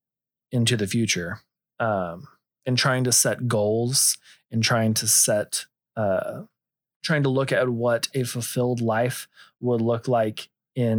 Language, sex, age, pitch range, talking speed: English, male, 30-49, 115-145 Hz, 140 wpm